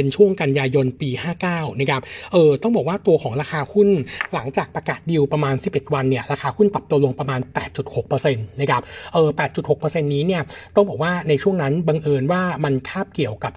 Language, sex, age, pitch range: Thai, male, 60-79, 135-170 Hz